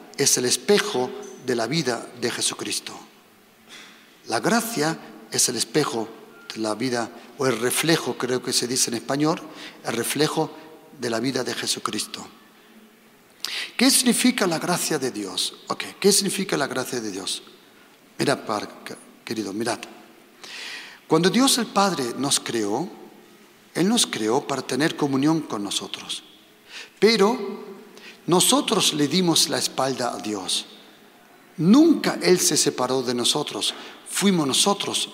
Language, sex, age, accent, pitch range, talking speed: Spanish, male, 50-69, Mexican, 130-200 Hz, 135 wpm